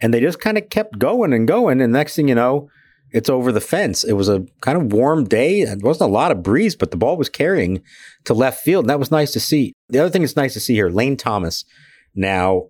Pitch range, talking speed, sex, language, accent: 100-130 Hz, 265 wpm, male, English, American